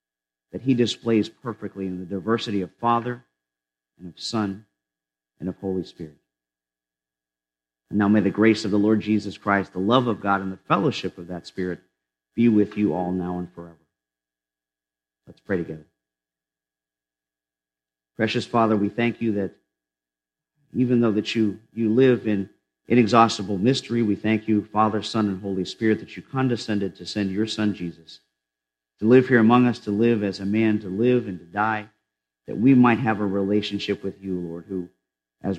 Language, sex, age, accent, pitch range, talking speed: English, male, 50-69, American, 90-110 Hz, 175 wpm